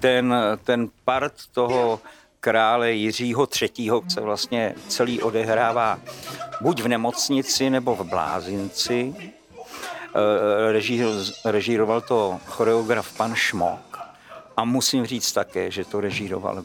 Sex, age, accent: male, 50-69, native